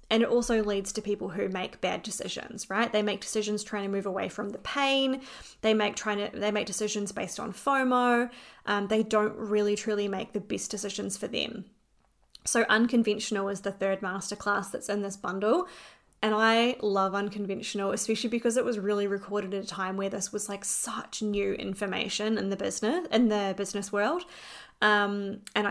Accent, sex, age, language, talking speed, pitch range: Australian, female, 20-39, English, 190 wpm, 200-220 Hz